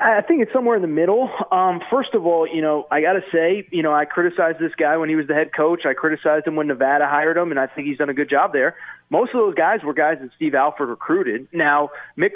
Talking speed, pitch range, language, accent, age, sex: 275 wpm, 145-185 Hz, English, American, 30-49, male